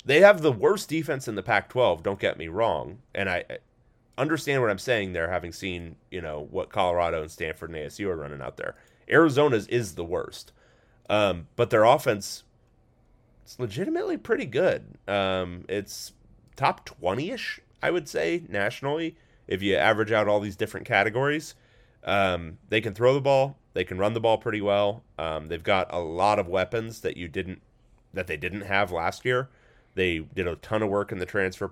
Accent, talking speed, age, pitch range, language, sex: American, 195 wpm, 30-49, 90-120 Hz, English, male